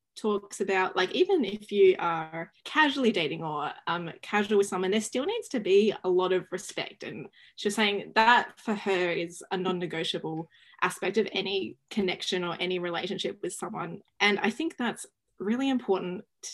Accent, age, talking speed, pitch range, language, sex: Australian, 20-39, 175 wpm, 185-220 Hz, English, female